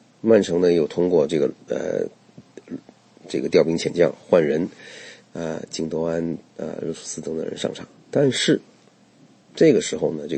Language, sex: Chinese, male